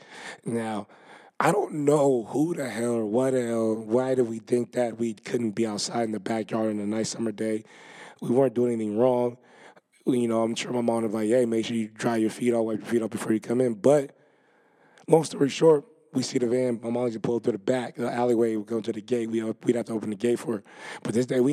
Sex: male